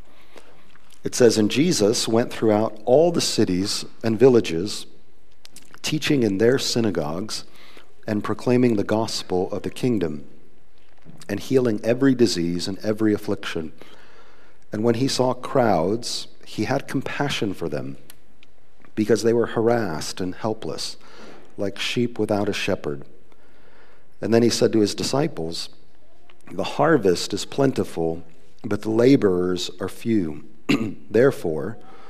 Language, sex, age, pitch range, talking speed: English, male, 40-59, 100-120 Hz, 125 wpm